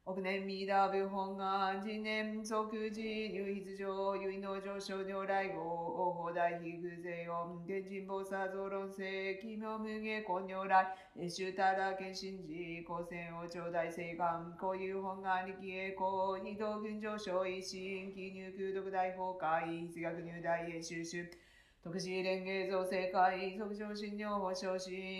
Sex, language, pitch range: female, Japanese, 170-190 Hz